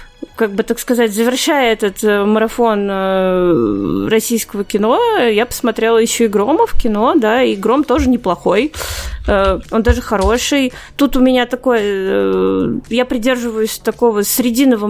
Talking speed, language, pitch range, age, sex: 125 wpm, Russian, 210-255 Hz, 20-39, female